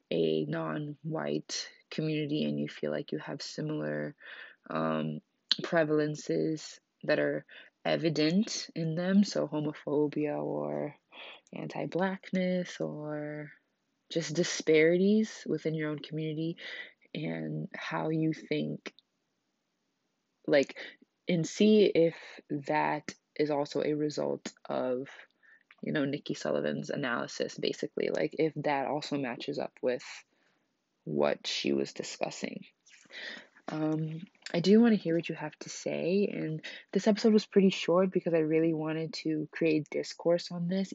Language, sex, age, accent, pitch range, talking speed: English, female, 20-39, American, 135-170 Hz, 125 wpm